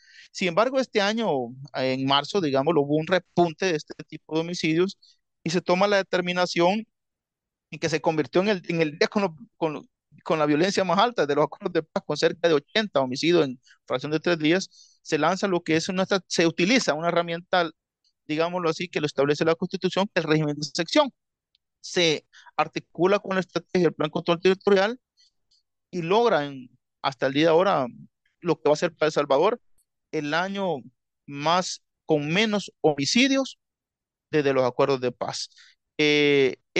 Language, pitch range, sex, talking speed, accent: Spanish, 150-190 Hz, male, 185 wpm, Venezuelan